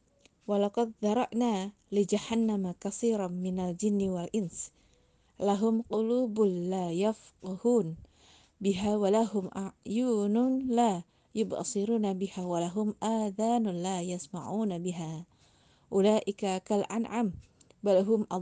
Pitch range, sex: 185-220 Hz, female